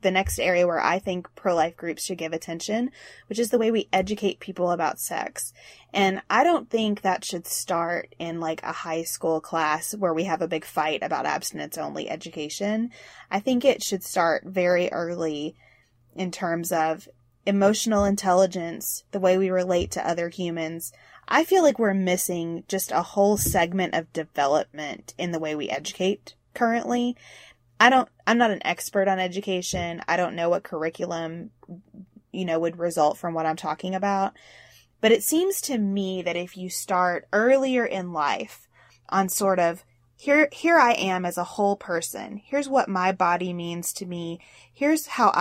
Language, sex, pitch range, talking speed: English, female, 170-210 Hz, 175 wpm